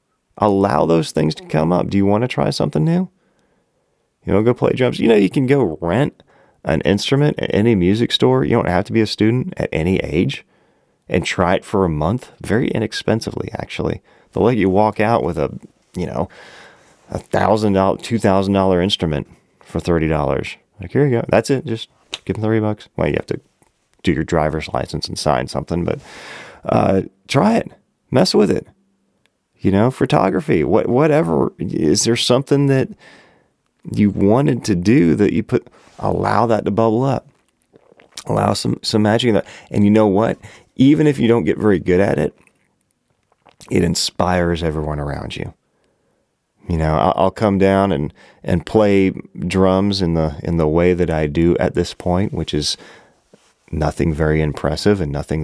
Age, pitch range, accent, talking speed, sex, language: 30-49, 80-110 Hz, American, 180 wpm, male, English